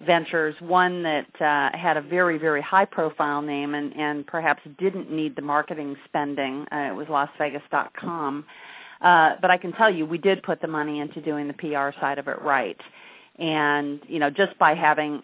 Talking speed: 185 wpm